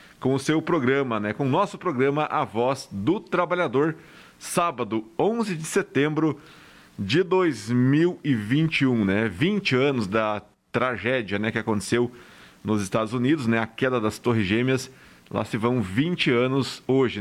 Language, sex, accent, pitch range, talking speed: Portuguese, male, Brazilian, 120-150 Hz, 145 wpm